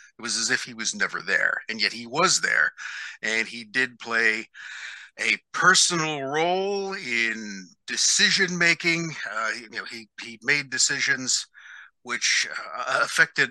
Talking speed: 145 wpm